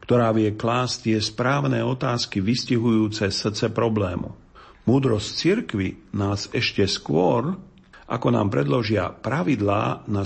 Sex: male